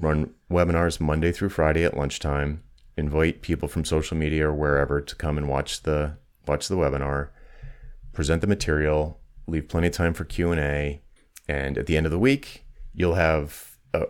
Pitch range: 75-90 Hz